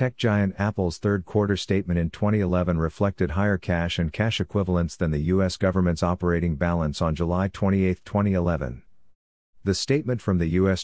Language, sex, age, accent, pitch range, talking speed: English, male, 50-69, American, 85-100 Hz, 155 wpm